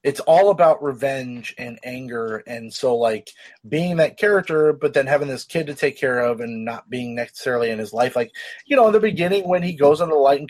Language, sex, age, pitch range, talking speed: English, male, 30-49, 110-145 Hz, 235 wpm